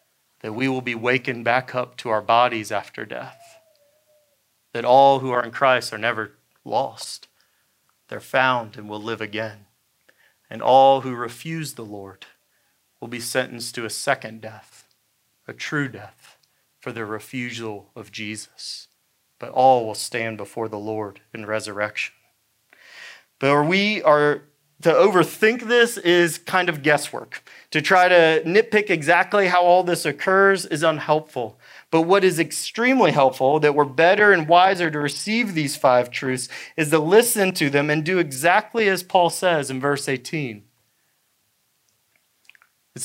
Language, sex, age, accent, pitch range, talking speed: English, male, 30-49, American, 125-190 Hz, 150 wpm